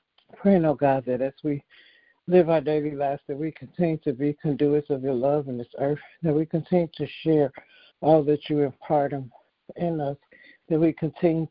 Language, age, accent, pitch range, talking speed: English, 60-79, American, 140-160 Hz, 190 wpm